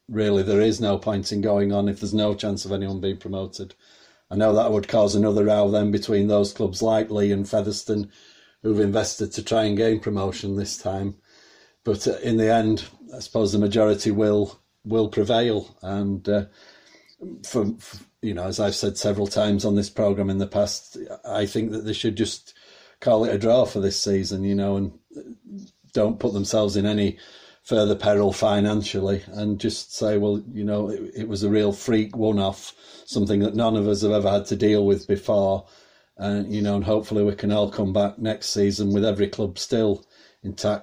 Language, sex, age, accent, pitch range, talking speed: English, male, 40-59, British, 100-110 Hz, 200 wpm